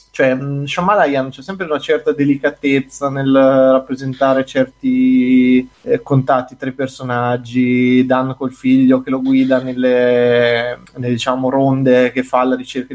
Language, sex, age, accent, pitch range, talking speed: Italian, male, 20-39, native, 125-140 Hz, 135 wpm